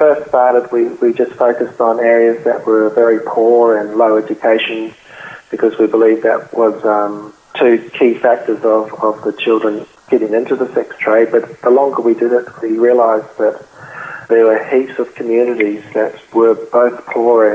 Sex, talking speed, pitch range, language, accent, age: male, 175 wpm, 110-115 Hz, English, Australian, 30-49